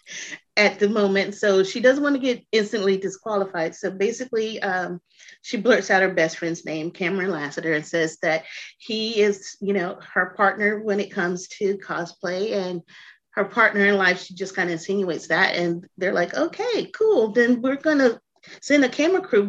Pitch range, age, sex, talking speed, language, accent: 180-235 Hz, 30-49, female, 185 wpm, English, American